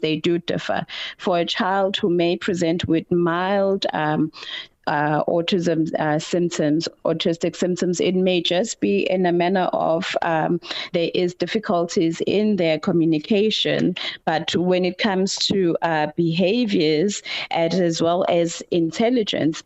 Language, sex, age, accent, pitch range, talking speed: English, female, 30-49, South African, 160-190 Hz, 130 wpm